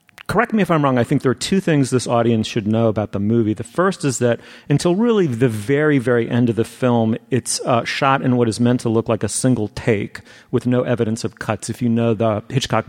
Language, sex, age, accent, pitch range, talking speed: English, male, 40-59, American, 110-140 Hz, 250 wpm